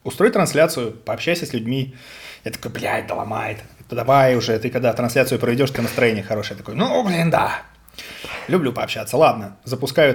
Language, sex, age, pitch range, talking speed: Russian, male, 20-39, 110-140 Hz, 165 wpm